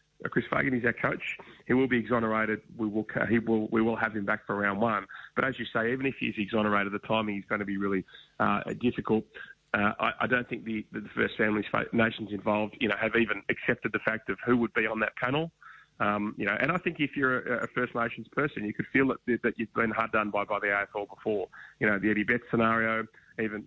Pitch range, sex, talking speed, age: 105-120 Hz, male, 245 wpm, 30-49